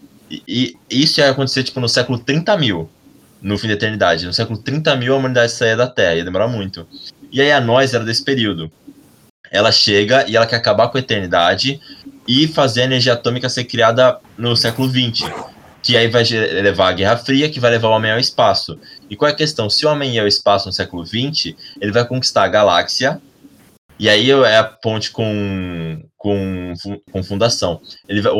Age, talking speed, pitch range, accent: 20-39, 200 wpm, 100-135 Hz, Brazilian